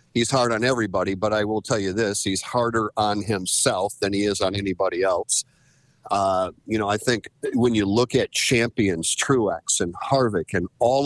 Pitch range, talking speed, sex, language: 110-130 Hz, 190 wpm, male, English